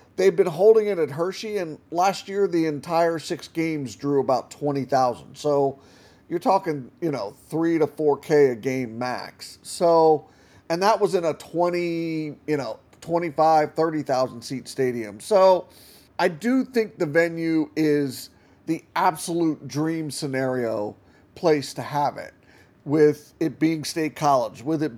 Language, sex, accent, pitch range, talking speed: English, male, American, 140-170 Hz, 150 wpm